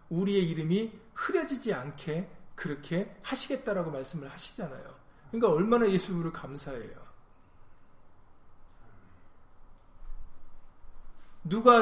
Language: Korean